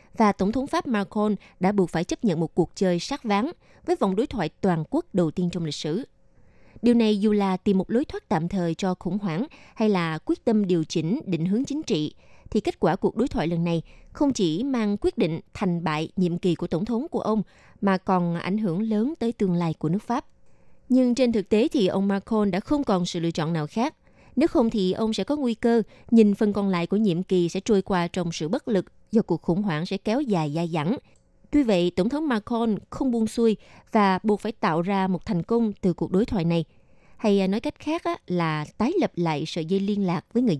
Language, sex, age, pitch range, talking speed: Vietnamese, female, 20-39, 175-230 Hz, 240 wpm